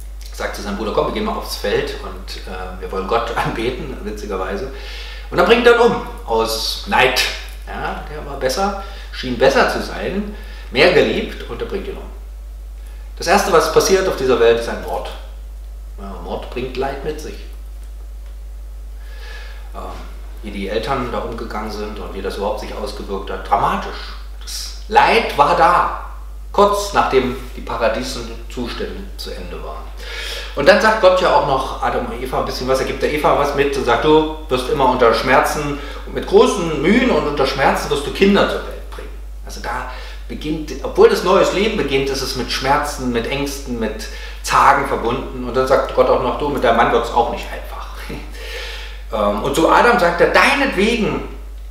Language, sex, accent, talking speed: German, male, German, 180 wpm